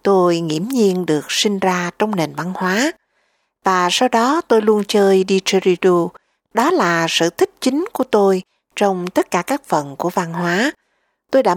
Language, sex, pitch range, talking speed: Vietnamese, female, 165-220 Hz, 175 wpm